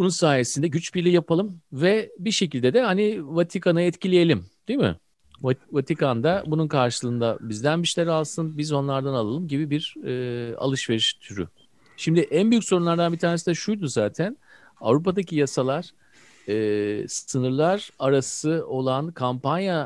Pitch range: 115-165 Hz